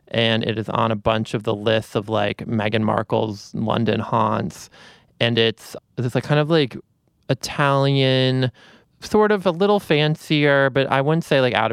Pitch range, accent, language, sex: 110-135 Hz, American, English, male